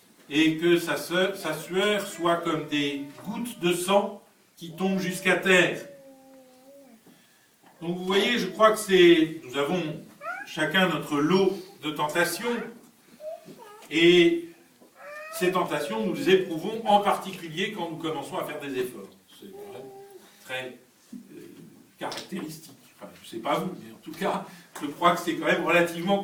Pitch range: 150-205 Hz